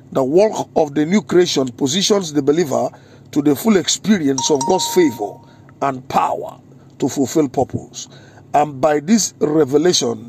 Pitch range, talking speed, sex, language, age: 135-175 Hz, 145 wpm, male, English, 50-69